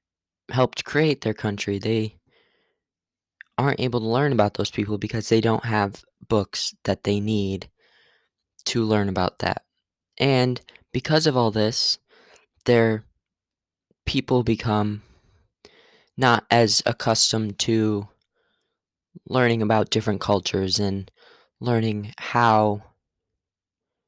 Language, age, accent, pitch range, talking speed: English, 10-29, American, 105-120 Hz, 105 wpm